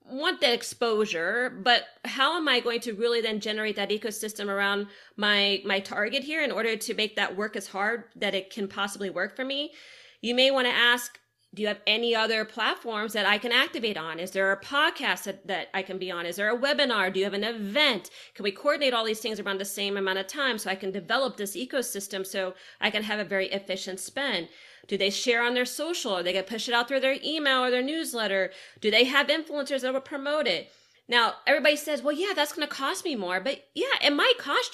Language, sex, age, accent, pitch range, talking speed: English, female, 30-49, American, 200-265 Hz, 240 wpm